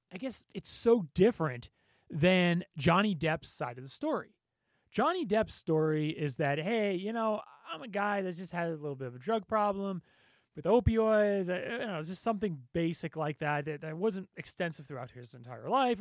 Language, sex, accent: English, male, American